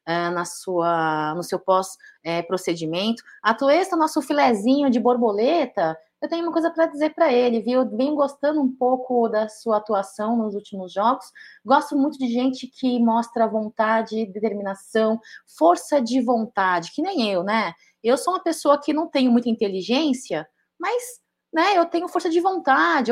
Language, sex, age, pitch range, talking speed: Portuguese, female, 30-49, 215-310 Hz, 160 wpm